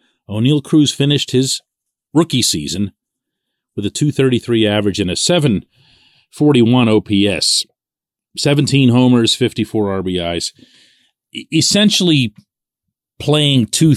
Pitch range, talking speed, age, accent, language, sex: 100-140 Hz, 95 wpm, 40-59, American, English, male